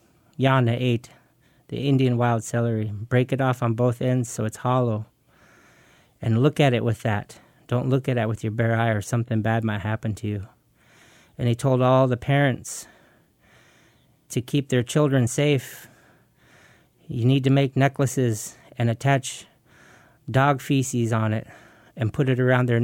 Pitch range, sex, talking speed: 115-135 Hz, male, 165 wpm